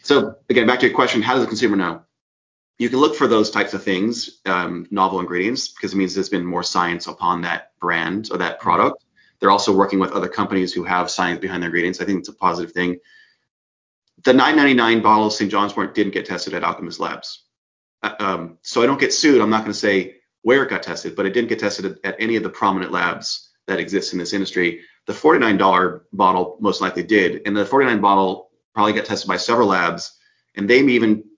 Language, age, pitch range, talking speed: English, 30-49, 90-110 Hz, 225 wpm